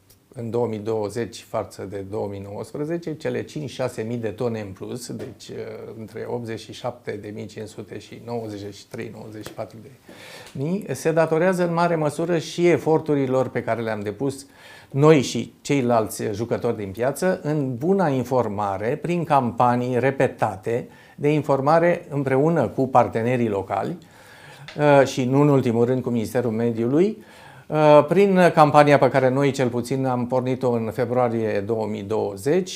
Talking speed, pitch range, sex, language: 125 wpm, 115-150 Hz, male, Romanian